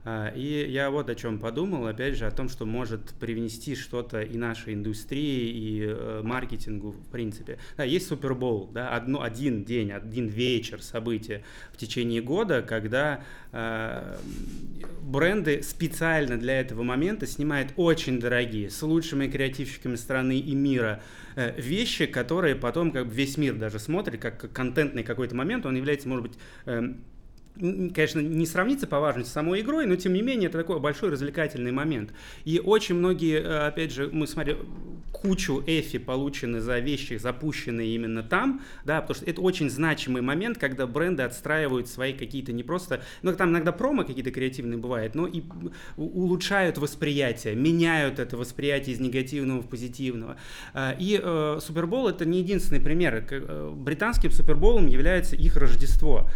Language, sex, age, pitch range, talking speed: Russian, male, 30-49, 120-155 Hz, 155 wpm